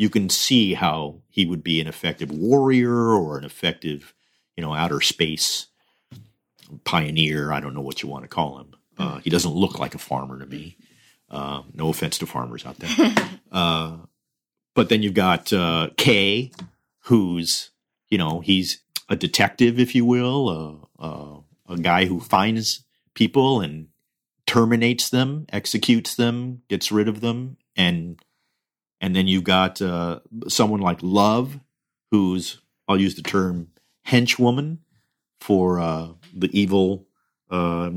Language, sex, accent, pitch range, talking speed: English, male, American, 85-115 Hz, 150 wpm